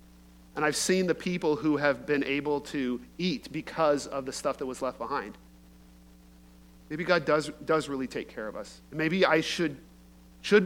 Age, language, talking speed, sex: 40-59, English, 180 wpm, male